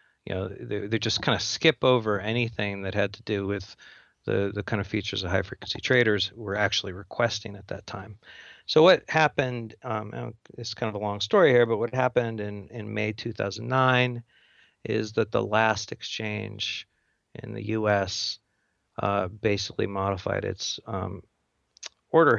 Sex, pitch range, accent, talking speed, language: male, 100-120 Hz, American, 165 wpm, English